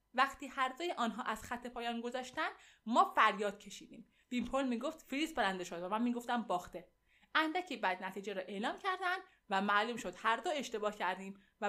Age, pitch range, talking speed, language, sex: 20-39, 205-275 Hz, 170 wpm, Persian, female